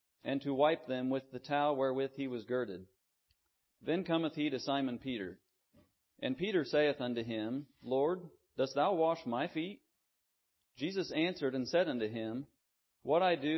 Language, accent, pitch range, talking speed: English, American, 120-150 Hz, 165 wpm